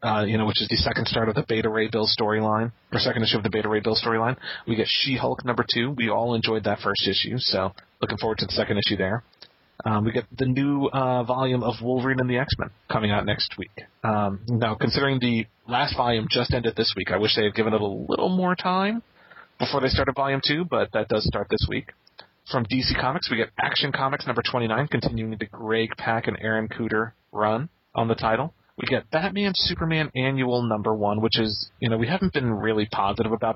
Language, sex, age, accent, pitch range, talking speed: English, male, 30-49, American, 110-130 Hz, 225 wpm